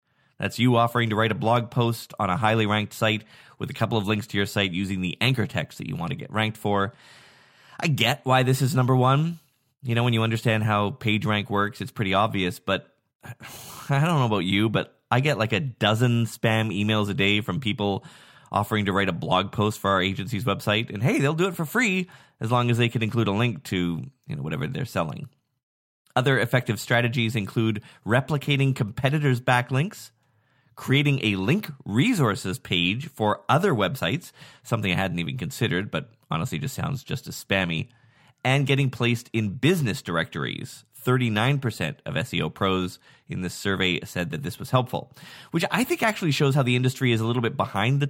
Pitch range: 105-145 Hz